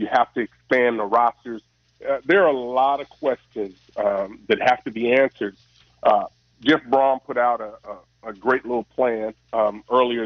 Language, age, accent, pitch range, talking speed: English, 40-59, American, 110-150 Hz, 185 wpm